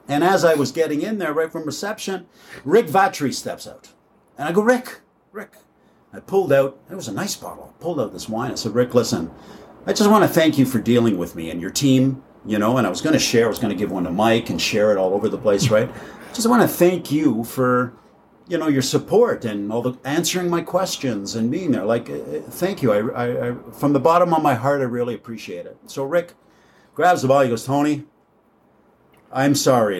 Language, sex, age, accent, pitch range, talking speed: English, male, 50-69, American, 120-160 Hz, 230 wpm